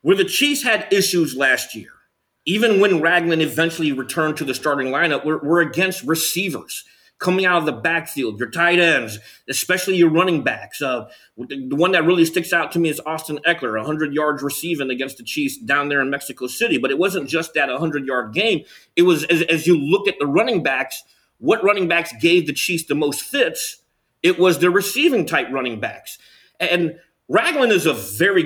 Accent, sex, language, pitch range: American, male, English, 150-180 Hz